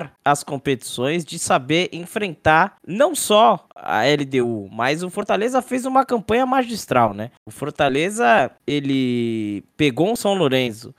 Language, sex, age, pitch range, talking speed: Portuguese, male, 10-29, 130-195 Hz, 130 wpm